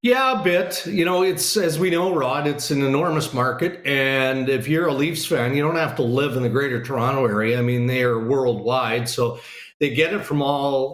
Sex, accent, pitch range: male, American, 125-160 Hz